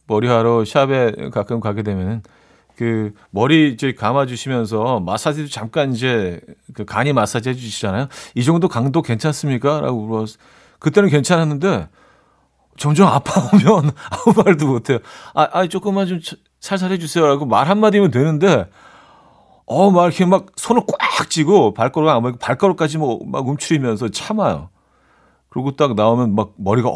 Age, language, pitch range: 40-59, Korean, 105-150 Hz